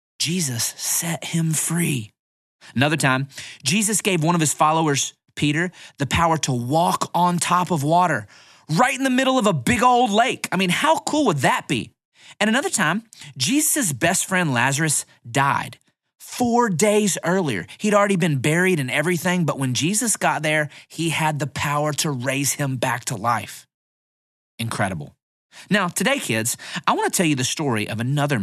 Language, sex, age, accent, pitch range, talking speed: English, male, 30-49, American, 140-210 Hz, 170 wpm